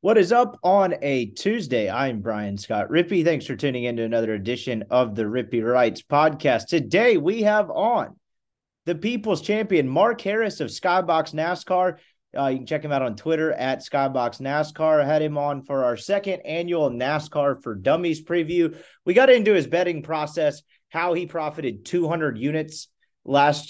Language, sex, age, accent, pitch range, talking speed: English, male, 30-49, American, 125-170 Hz, 170 wpm